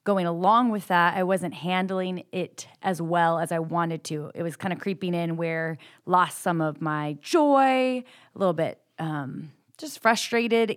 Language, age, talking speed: English, 20-39, 185 wpm